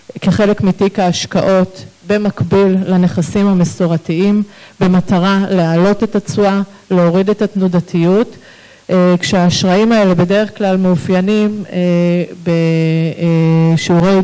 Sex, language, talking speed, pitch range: female, Hebrew, 80 wpm, 165-195 Hz